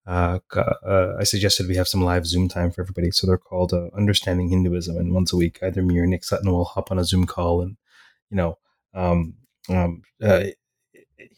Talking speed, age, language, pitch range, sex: 205 wpm, 30-49, English, 90-105 Hz, male